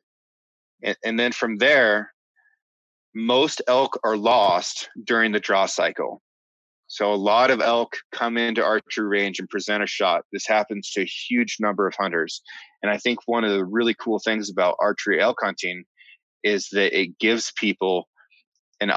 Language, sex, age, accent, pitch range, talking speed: English, male, 30-49, American, 100-120 Hz, 165 wpm